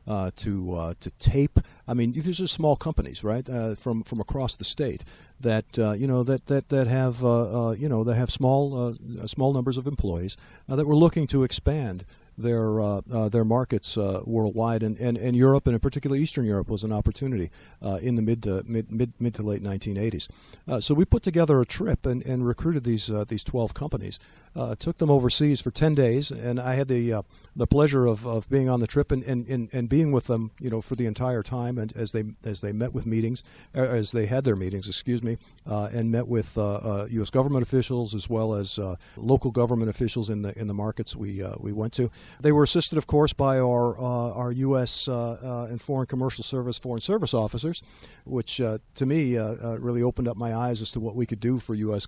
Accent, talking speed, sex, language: American, 230 wpm, male, English